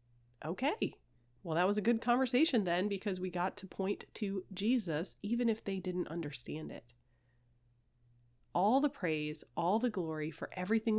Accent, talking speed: American, 160 wpm